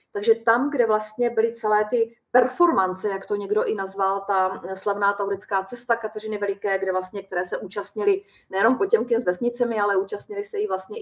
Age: 30-49